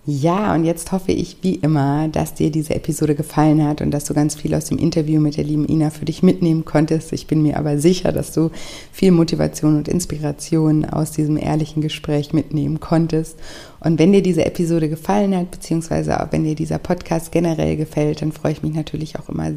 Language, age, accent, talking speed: German, 60-79, German, 205 wpm